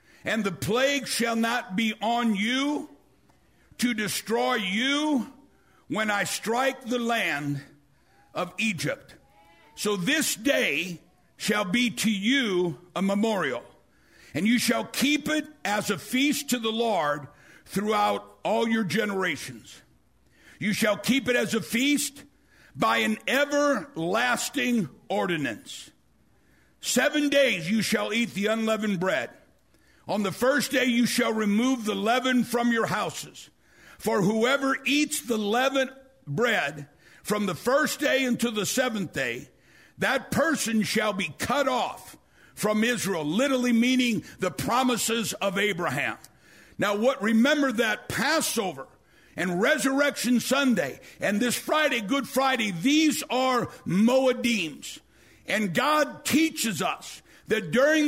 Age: 60-79